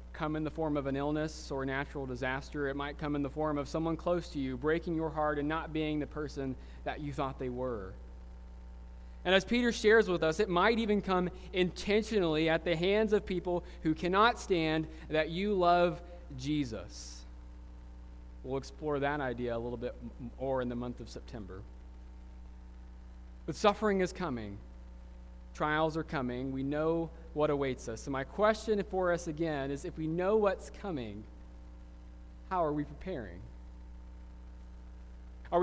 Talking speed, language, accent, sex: 170 wpm, English, American, male